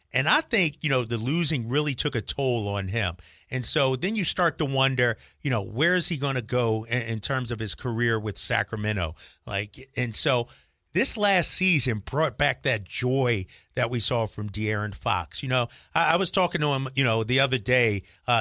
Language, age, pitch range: English, 30-49, 115-150 Hz